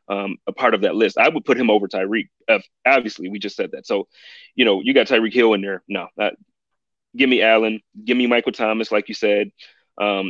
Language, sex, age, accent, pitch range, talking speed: English, male, 30-49, American, 115-155 Hz, 235 wpm